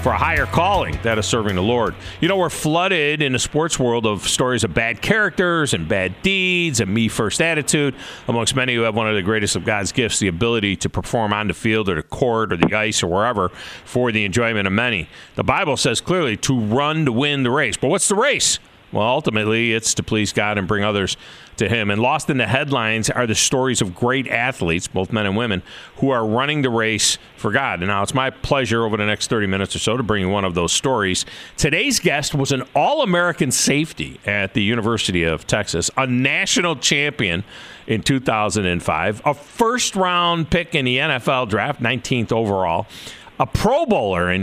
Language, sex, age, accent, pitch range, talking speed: English, male, 40-59, American, 105-140 Hz, 210 wpm